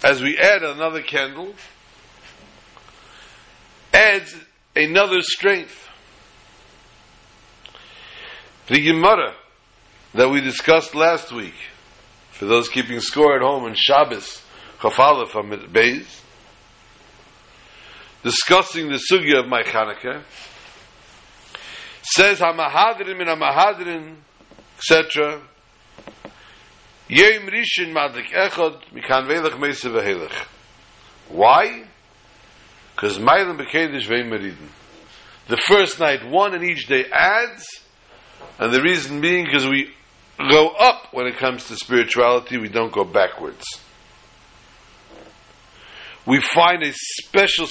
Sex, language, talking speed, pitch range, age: male, English, 90 wpm, 125-175 Hz, 60-79